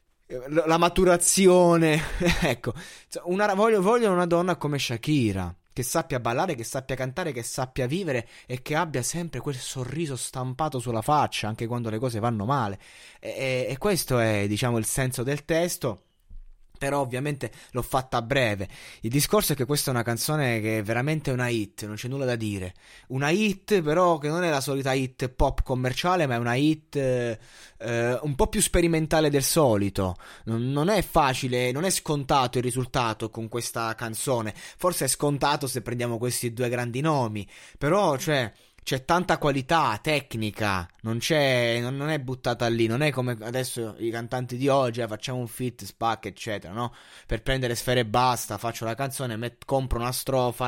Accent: native